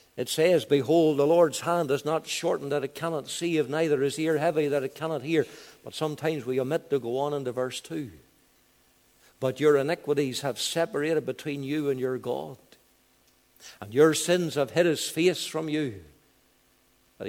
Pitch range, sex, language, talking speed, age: 115-170 Hz, male, English, 180 wpm, 60-79